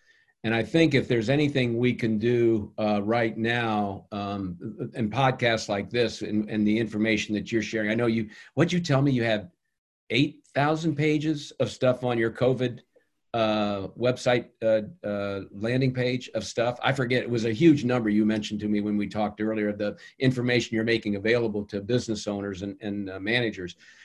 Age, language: 50-69, English